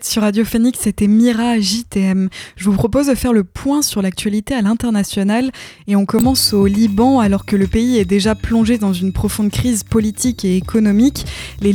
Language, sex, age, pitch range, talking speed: French, female, 20-39, 200-240 Hz, 190 wpm